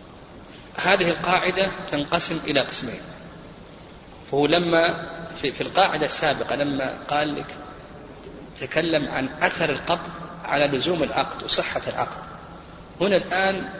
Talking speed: 110 wpm